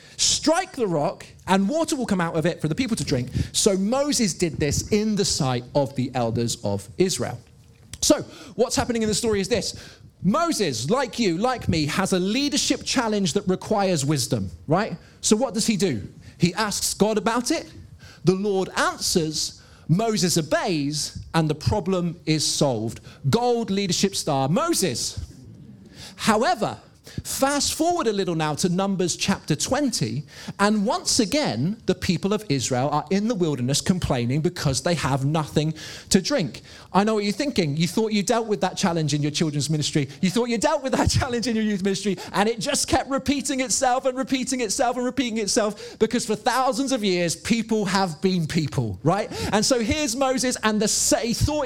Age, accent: 40-59, British